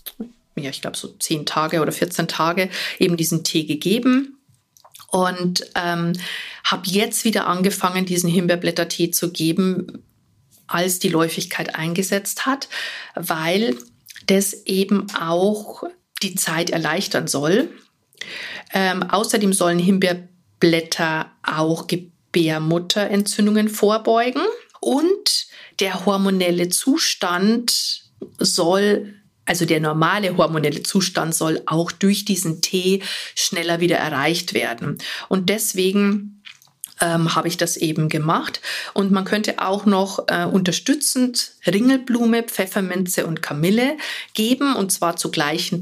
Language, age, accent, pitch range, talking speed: German, 50-69, German, 170-210 Hz, 115 wpm